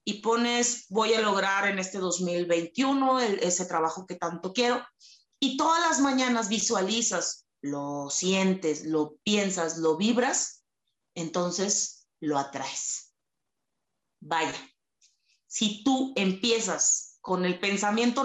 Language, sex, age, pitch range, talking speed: Spanish, female, 30-49, 175-235 Hz, 115 wpm